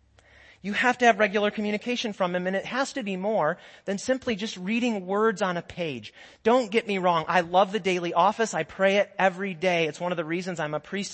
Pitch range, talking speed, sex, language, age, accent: 150-220 Hz, 235 wpm, male, English, 30-49, American